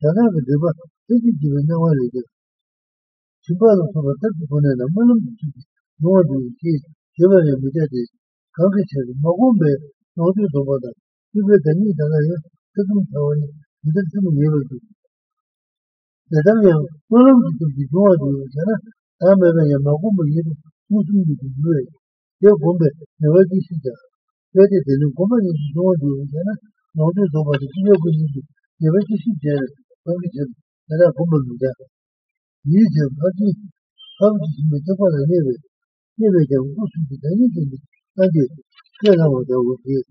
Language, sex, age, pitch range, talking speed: Italian, male, 60-79, 145-200 Hz, 35 wpm